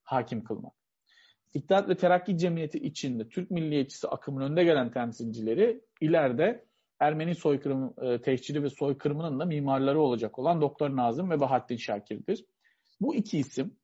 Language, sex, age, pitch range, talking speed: Turkish, male, 40-59, 130-175 Hz, 135 wpm